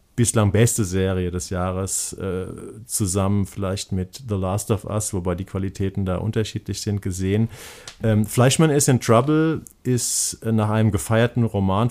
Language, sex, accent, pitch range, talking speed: German, male, German, 95-120 Hz, 140 wpm